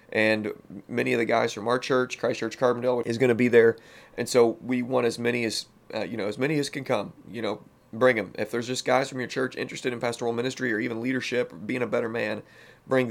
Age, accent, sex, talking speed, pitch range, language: 30-49, American, male, 245 wpm, 105-120 Hz, English